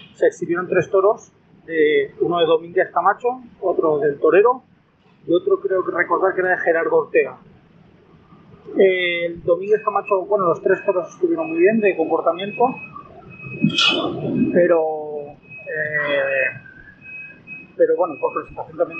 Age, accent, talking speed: 30-49, Spanish, 125 wpm